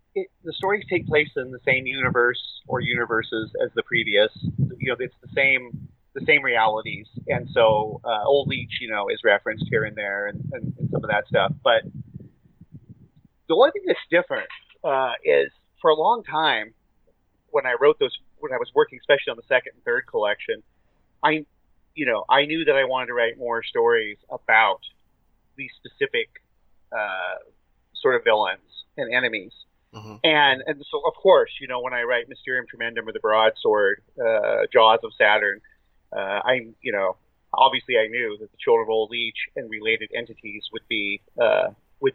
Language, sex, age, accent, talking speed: English, male, 30-49, American, 180 wpm